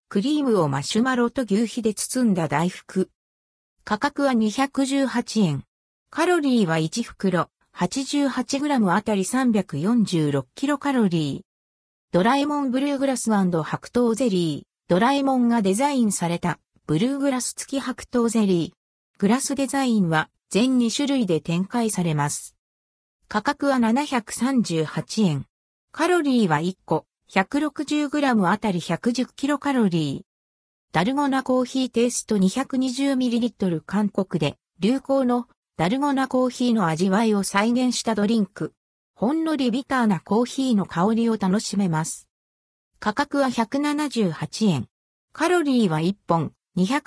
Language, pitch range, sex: Japanese, 180-270 Hz, female